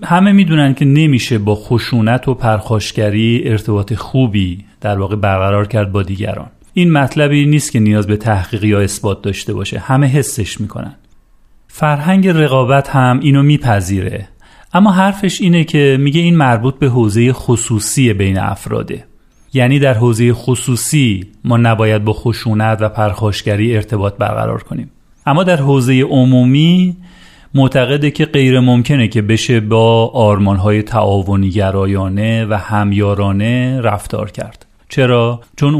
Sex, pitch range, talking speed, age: male, 105-130 Hz, 135 wpm, 40-59